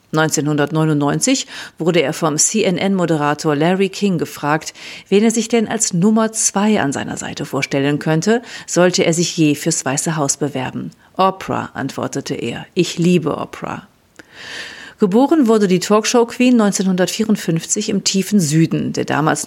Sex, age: female, 50-69